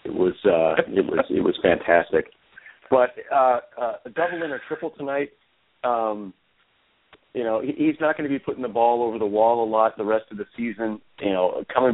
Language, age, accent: English, 40-59, American